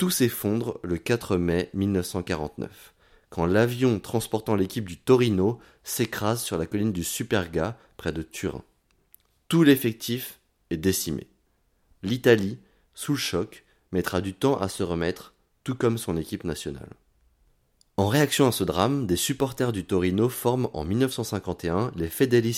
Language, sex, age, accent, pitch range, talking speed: French, male, 30-49, French, 90-120 Hz, 140 wpm